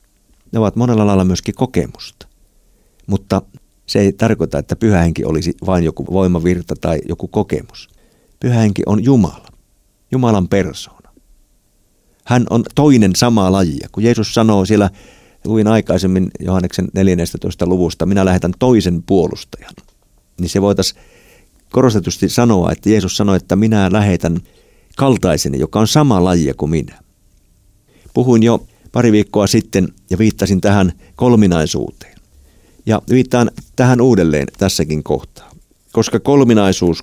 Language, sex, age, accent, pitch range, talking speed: Finnish, male, 50-69, native, 90-110 Hz, 130 wpm